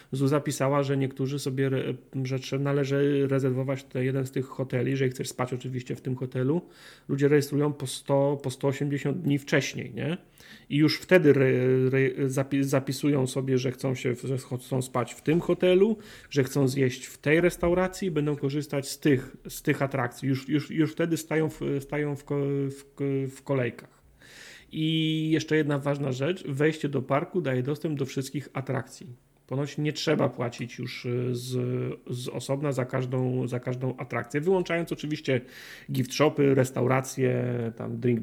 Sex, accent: male, native